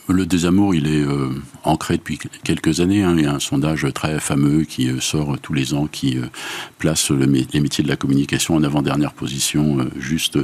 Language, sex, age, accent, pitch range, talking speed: French, male, 50-69, French, 75-85 Hz, 200 wpm